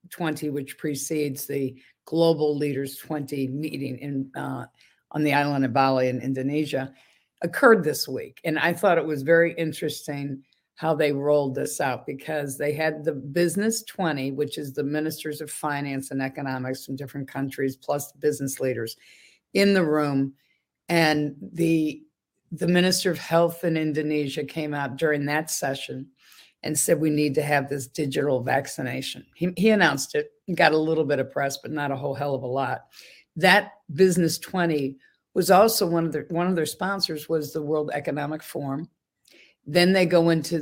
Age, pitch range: 50-69, 140-165 Hz